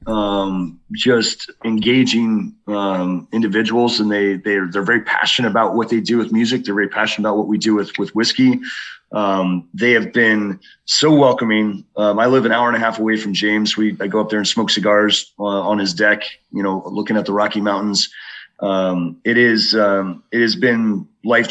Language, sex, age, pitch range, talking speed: English, male, 30-49, 100-115 Hz, 200 wpm